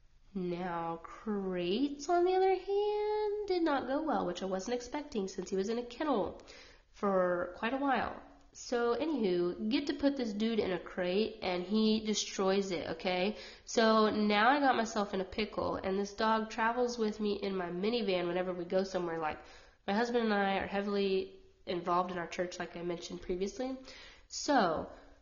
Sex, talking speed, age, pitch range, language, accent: female, 180 wpm, 20-39, 185-240 Hz, English, American